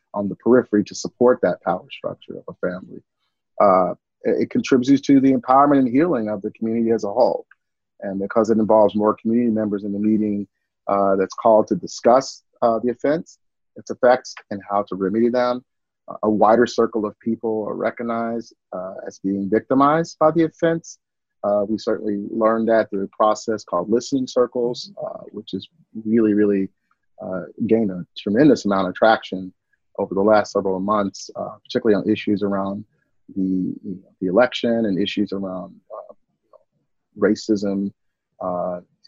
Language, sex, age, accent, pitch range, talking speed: English, male, 30-49, American, 100-115 Hz, 165 wpm